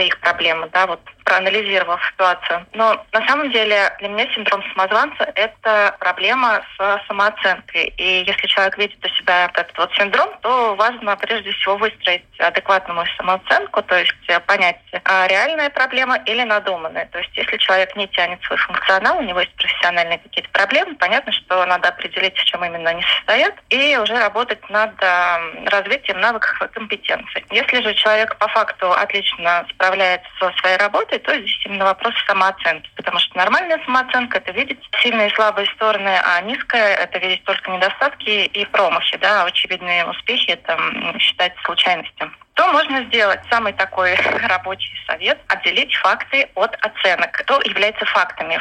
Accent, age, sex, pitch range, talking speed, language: native, 20-39, female, 185-220 Hz, 160 wpm, Russian